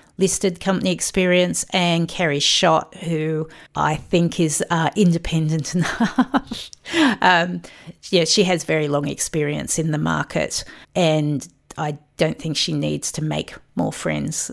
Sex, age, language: female, 40-59, English